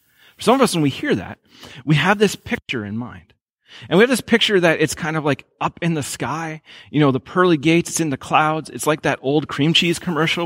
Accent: American